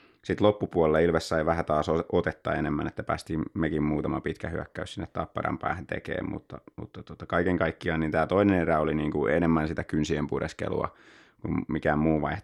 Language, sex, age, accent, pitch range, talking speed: Finnish, male, 30-49, native, 75-90 Hz, 180 wpm